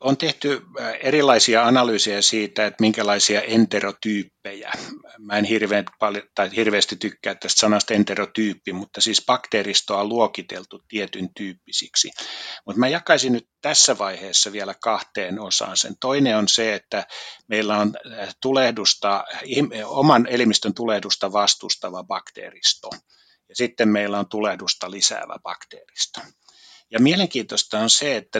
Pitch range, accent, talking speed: 100-120 Hz, native, 115 wpm